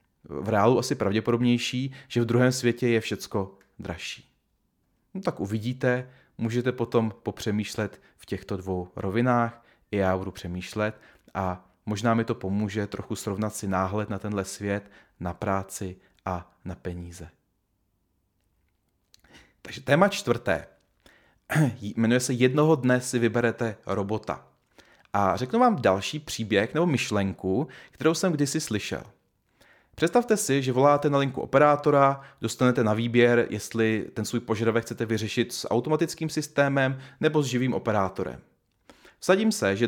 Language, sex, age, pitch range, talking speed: Czech, male, 30-49, 100-130 Hz, 135 wpm